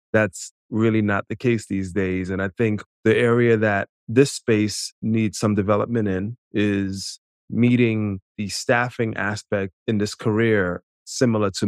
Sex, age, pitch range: male, 30-49, 105-120 Hz